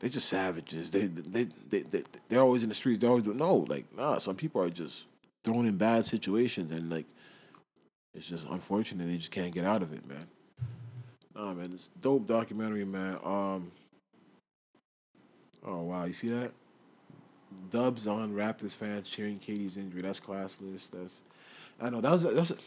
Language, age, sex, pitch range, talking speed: English, 20-39, male, 90-120 Hz, 185 wpm